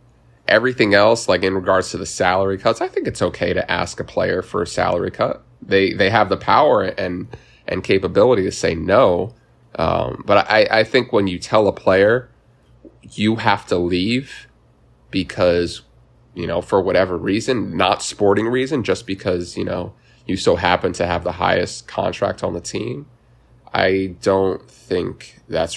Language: English